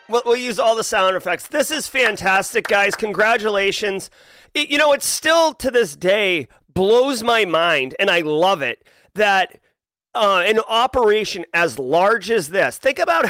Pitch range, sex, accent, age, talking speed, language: 185-240 Hz, male, American, 30-49, 160 wpm, English